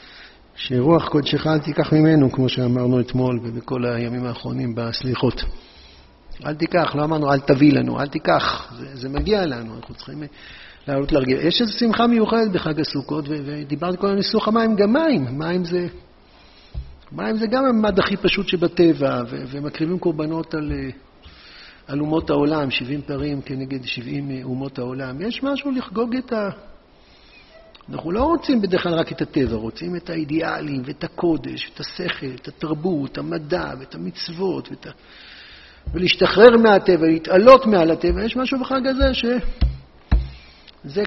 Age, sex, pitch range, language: 50-69, male, 140-215 Hz, Hebrew